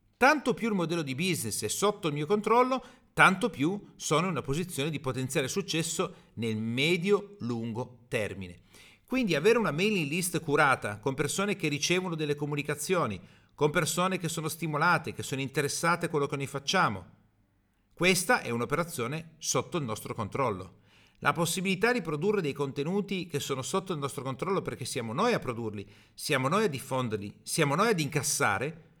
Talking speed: 165 wpm